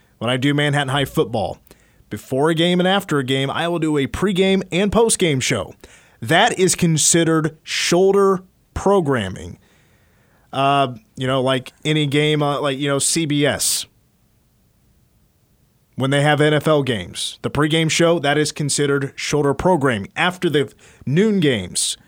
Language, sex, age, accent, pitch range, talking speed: English, male, 30-49, American, 135-160 Hz, 145 wpm